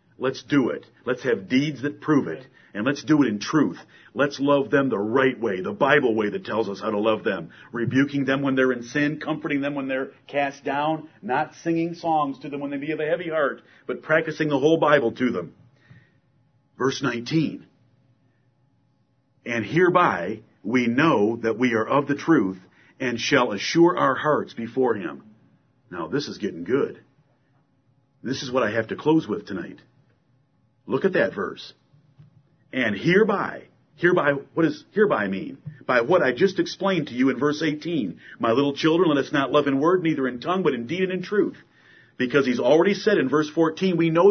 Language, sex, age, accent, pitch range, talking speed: English, male, 50-69, American, 130-160 Hz, 195 wpm